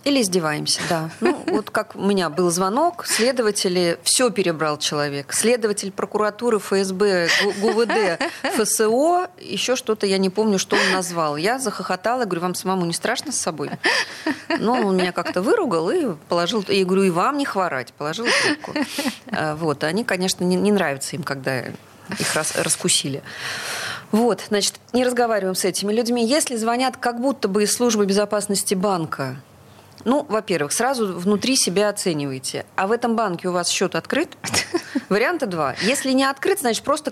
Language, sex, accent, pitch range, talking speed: Russian, female, native, 180-245 Hz, 160 wpm